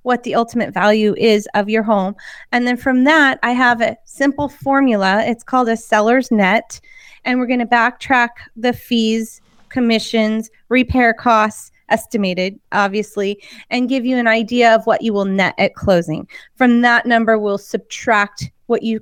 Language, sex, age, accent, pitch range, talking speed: English, female, 20-39, American, 215-250 Hz, 165 wpm